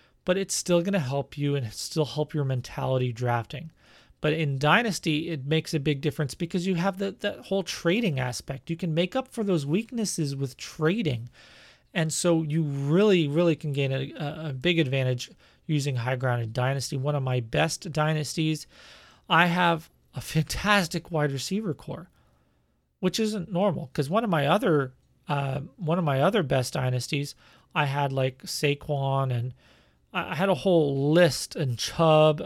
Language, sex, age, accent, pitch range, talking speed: English, male, 30-49, American, 135-175 Hz, 170 wpm